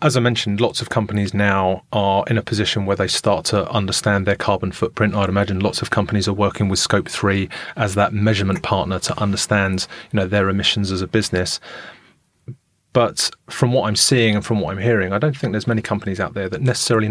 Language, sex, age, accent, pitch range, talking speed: English, male, 30-49, British, 95-115 Hz, 215 wpm